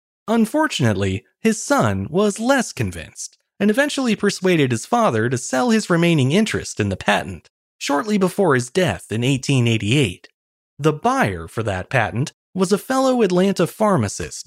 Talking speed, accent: 145 wpm, American